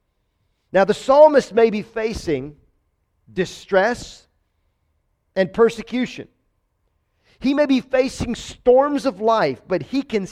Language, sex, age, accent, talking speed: English, male, 40-59, American, 110 wpm